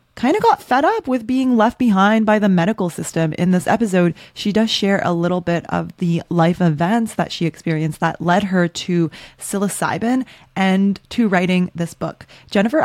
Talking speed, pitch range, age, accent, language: 185 wpm, 165-195 Hz, 20-39, American, English